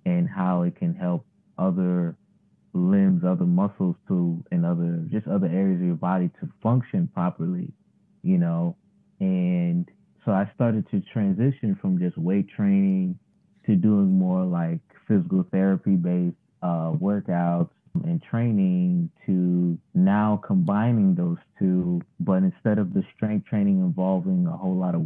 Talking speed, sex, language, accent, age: 140 wpm, male, English, American, 20-39